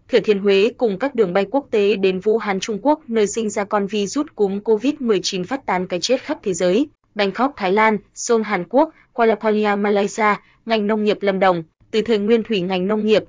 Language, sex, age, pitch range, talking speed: Vietnamese, female, 20-39, 195-225 Hz, 230 wpm